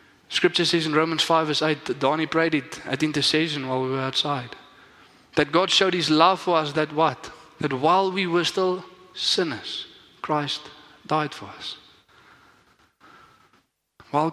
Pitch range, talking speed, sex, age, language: 140-170 Hz, 150 wpm, male, 20-39, English